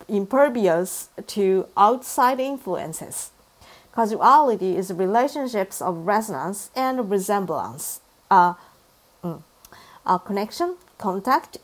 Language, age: English, 50-69